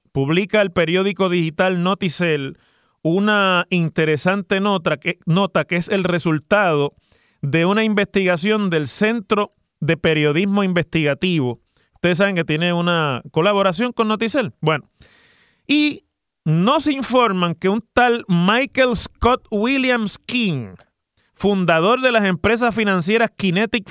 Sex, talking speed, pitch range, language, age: male, 120 wpm, 160-210 Hz, Spanish, 30-49